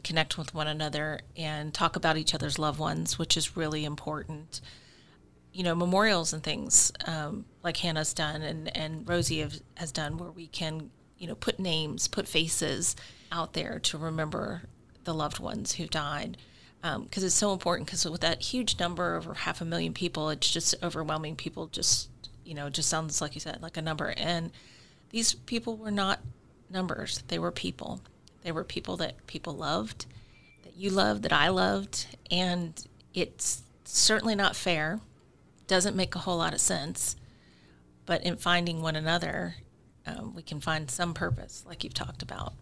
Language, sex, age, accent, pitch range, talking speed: English, female, 30-49, American, 145-175 Hz, 175 wpm